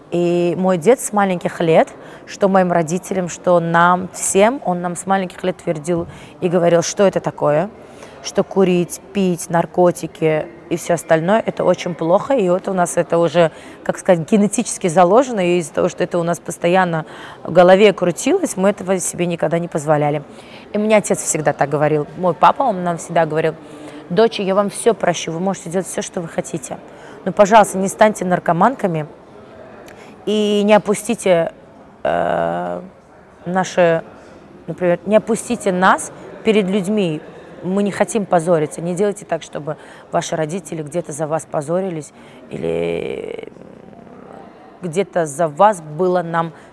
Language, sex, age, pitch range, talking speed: Russian, female, 20-39, 165-195 Hz, 155 wpm